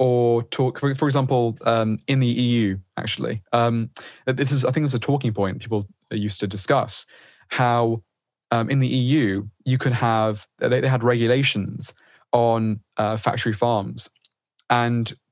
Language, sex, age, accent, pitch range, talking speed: English, male, 20-39, British, 105-125 Hz, 155 wpm